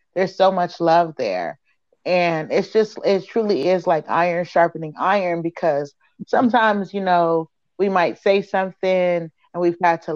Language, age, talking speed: English, 30-49, 155 wpm